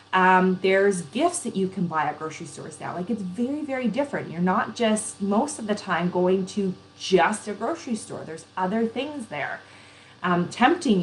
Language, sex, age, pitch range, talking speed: English, female, 20-39, 170-225 Hz, 190 wpm